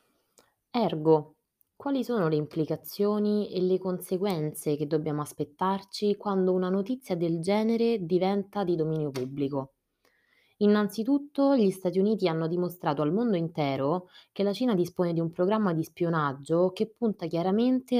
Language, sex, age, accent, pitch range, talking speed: Italian, female, 20-39, native, 150-205 Hz, 135 wpm